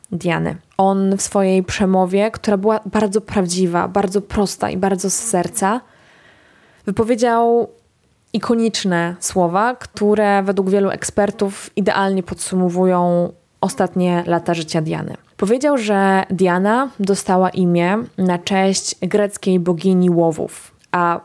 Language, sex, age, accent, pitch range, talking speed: Polish, female, 20-39, native, 175-210 Hz, 105 wpm